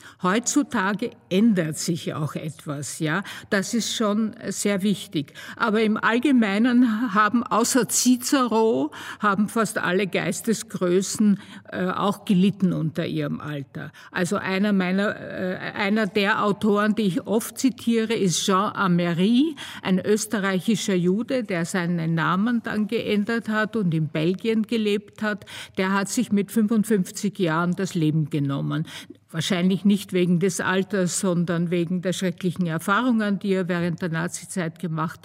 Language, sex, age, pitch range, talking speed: German, female, 50-69, 180-225 Hz, 135 wpm